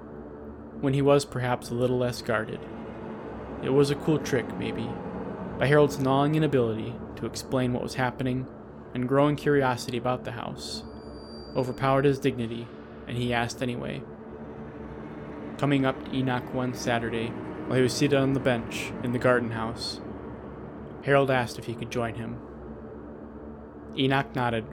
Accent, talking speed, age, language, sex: American, 150 wpm, 20-39, English, male